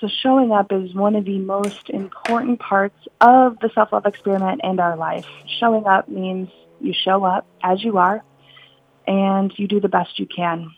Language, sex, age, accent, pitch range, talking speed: English, female, 30-49, American, 185-225 Hz, 185 wpm